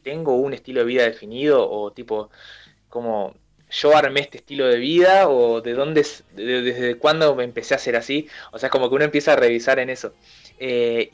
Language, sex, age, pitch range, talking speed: Spanish, male, 20-39, 120-150 Hz, 195 wpm